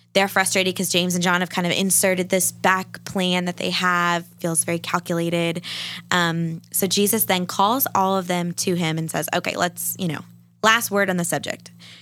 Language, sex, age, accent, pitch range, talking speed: English, female, 20-39, American, 160-185 Hz, 200 wpm